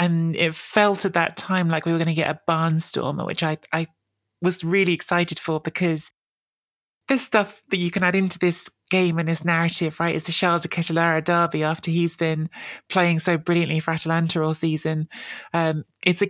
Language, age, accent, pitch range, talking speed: English, 20-39, British, 160-180 Hz, 200 wpm